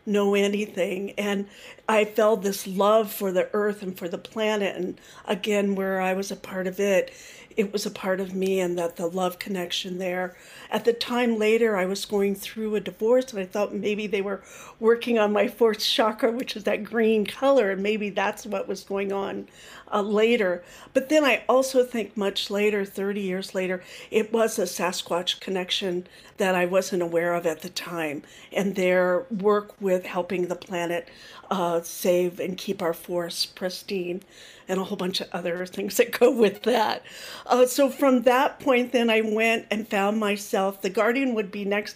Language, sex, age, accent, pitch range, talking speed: English, female, 50-69, American, 185-220 Hz, 190 wpm